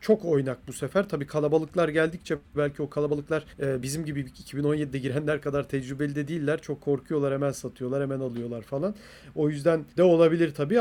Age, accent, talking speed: 40-59, native, 165 wpm